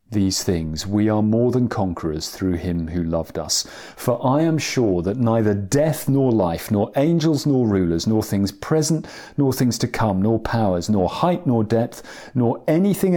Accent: British